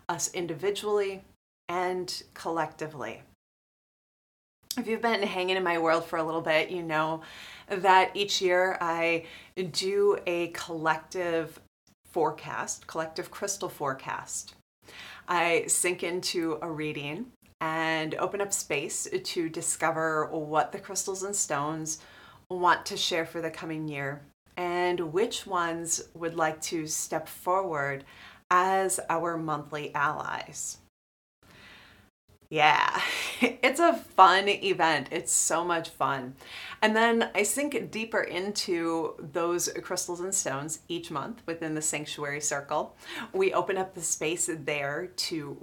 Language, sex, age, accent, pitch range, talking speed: English, female, 30-49, American, 155-190 Hz, 125 wpm